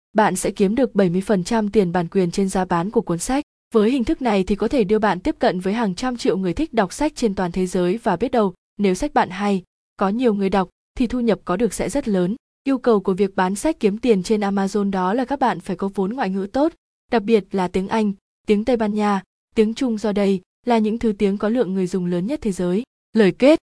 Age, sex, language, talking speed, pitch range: 20-39, female, Vietnamese, 260 wpm, 195-235 Hz